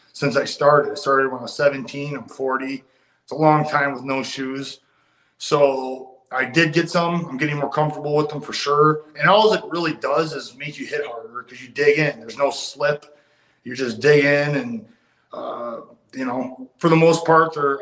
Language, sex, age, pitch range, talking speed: English, male, 30-49, 130-155 Hz, 205 wpm